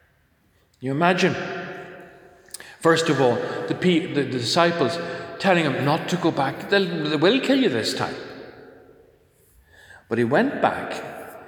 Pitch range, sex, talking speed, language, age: 115-165 Hz, male, 130 wpm, English, 40-59